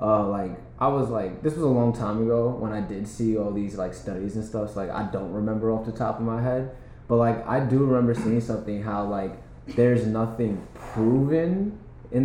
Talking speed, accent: 220 wpm, American